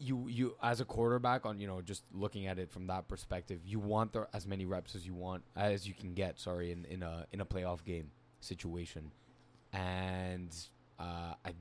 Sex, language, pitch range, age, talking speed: male, English, 95-125 Hz, 20-39, 205 wpm